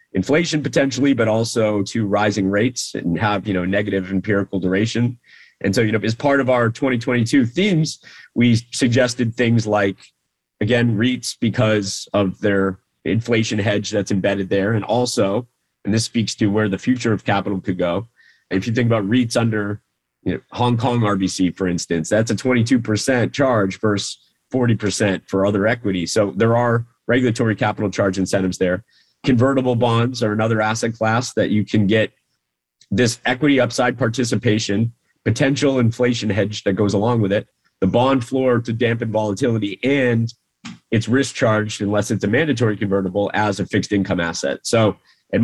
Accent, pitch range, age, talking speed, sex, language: American, 100-120 Hz, 30-49, 170 wpm, male, English